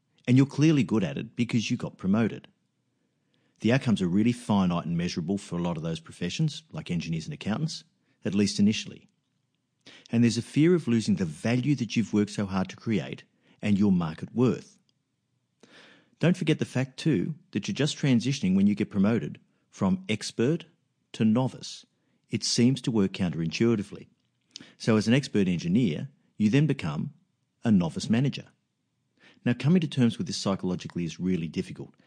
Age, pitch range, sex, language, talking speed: 50-69, 100-155 Hz, male, English, 170 wpm